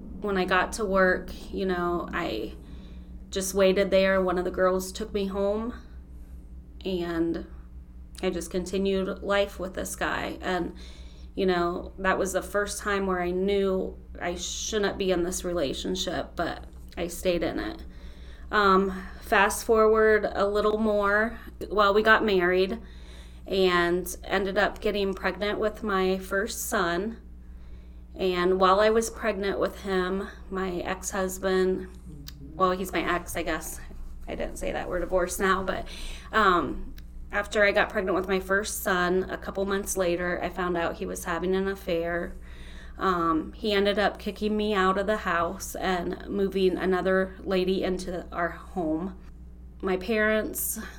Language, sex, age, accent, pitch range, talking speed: English, female, 20-39, American, 165-200 Hz, 155 wpm